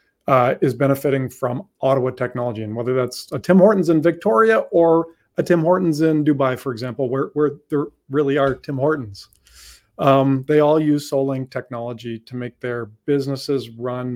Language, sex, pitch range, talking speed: English, male, 125-170 Hz, 170 wpm